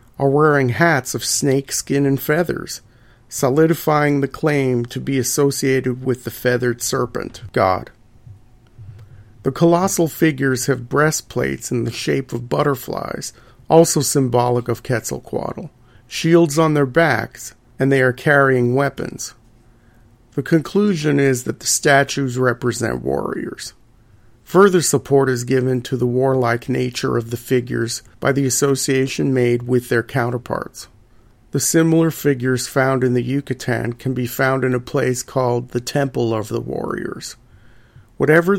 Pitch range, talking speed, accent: 120-140 Hz, 135 wpm, American